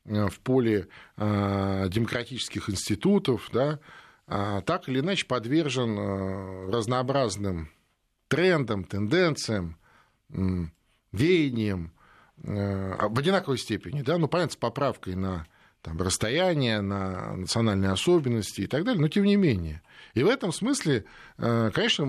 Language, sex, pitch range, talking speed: Russian, male, 105-145 Hz, 110 wpm